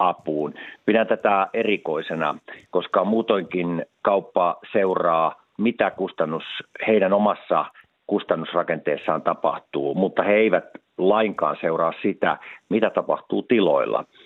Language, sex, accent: Finnish, male, native